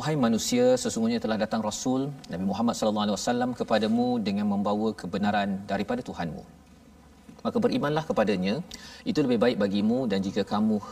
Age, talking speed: 40-59, 150 wpm